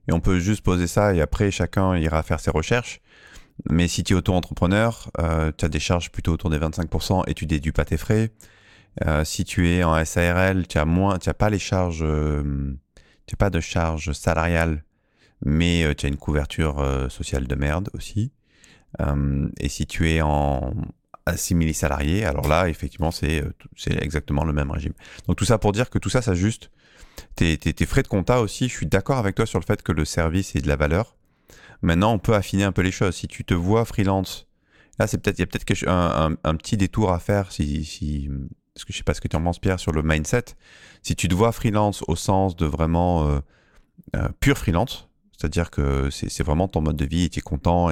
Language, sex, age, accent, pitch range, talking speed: French, male, 30-49, French, 75-100 Hz, 215 wpm